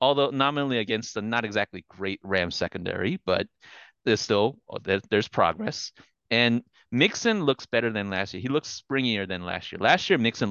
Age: 30-49